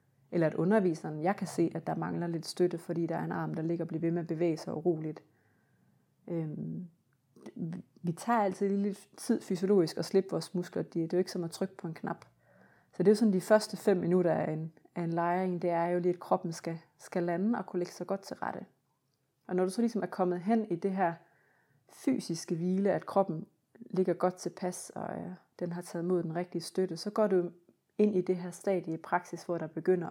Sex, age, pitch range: female, 30-49, 165-195 Hz